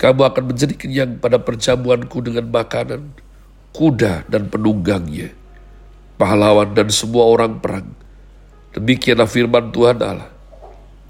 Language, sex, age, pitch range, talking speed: Indonesian, male, 50-69, 115-140 Hz, 110 wpm